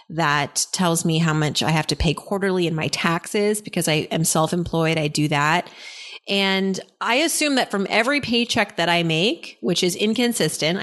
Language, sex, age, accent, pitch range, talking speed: English, female, 30-49, American, 165-210 Hz, 185 wpm